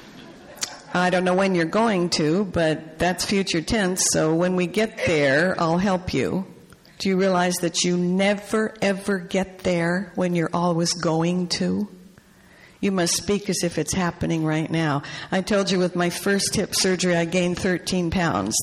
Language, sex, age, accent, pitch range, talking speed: English, female, 60-79, American, 160-195 Hz, 175 wpm